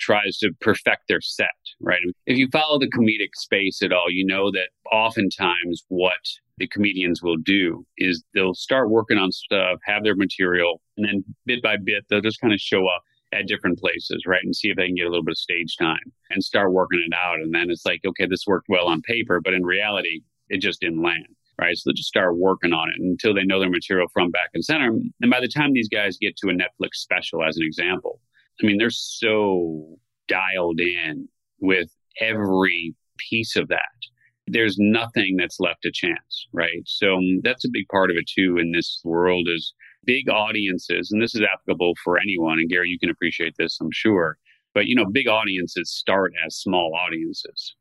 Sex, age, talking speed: male, 30-49, 210 wpm